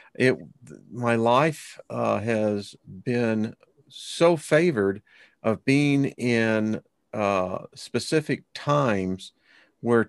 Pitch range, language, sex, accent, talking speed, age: 100-120 Hz, English, male, American, 90 wpm, 50-69